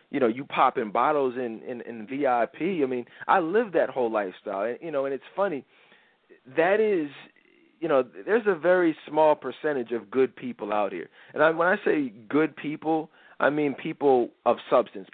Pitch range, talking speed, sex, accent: 130-155 Hz, 185 wpm, male, American